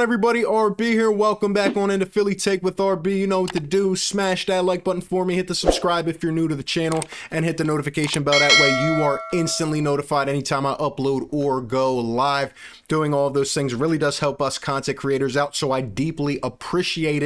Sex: male